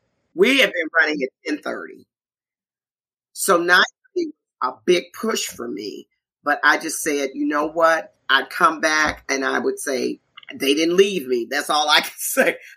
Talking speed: 170 wpm